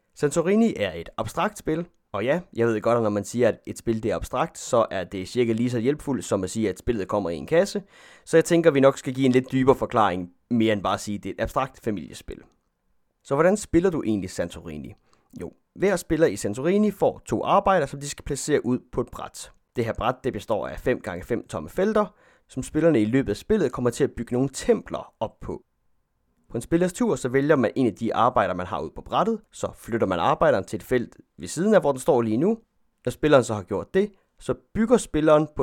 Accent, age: native, 30-49